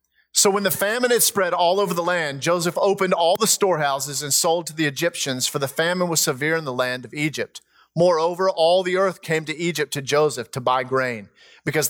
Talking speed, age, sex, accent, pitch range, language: 215 wpm, 40-59, male, American, 150-200 Hz, English